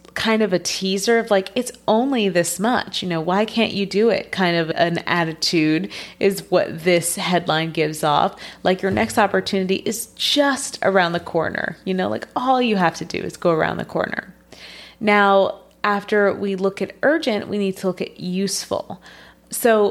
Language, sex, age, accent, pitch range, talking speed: English, female, 30-49, American, 170-210 Hz, 185 wpm